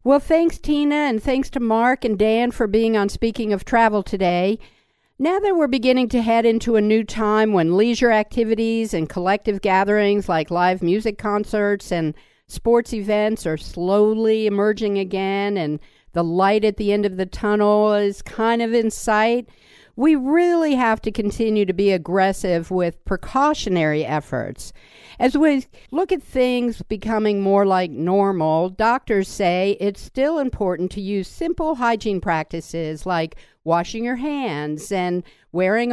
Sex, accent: female, American